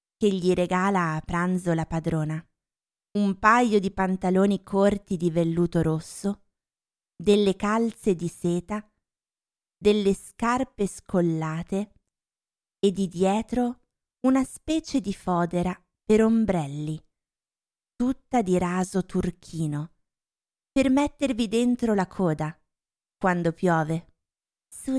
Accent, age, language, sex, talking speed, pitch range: native, 30-49, Italian, female, 105 wpm, 180-215 Hz